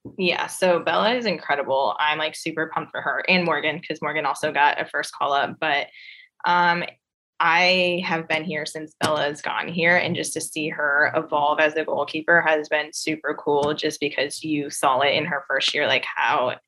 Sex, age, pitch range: female, 10-29, 150-170 Hz